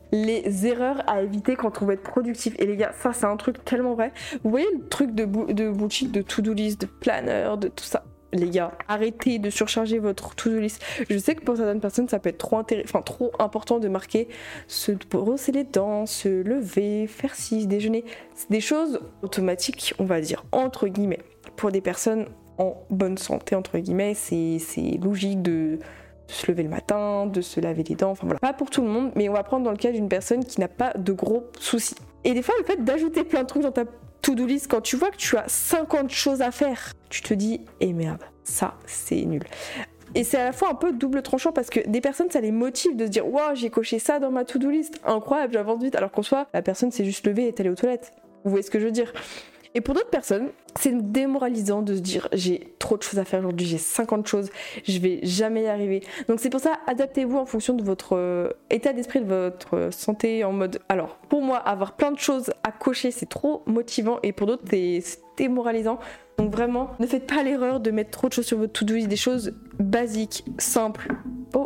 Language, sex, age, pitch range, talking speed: French, female, 20-39, 200-260 Hz, 235 wpm